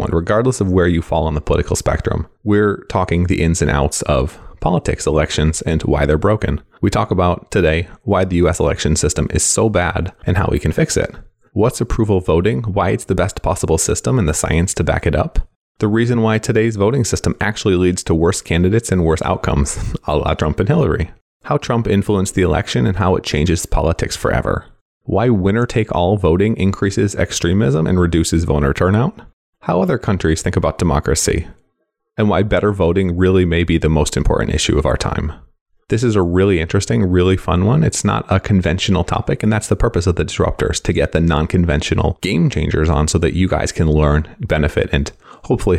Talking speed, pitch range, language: 200 wpm, 80-105 Hz, English